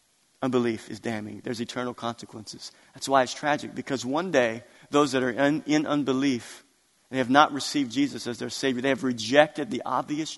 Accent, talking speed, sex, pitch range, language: American, 185 wpm, male, 130-185 Hz, English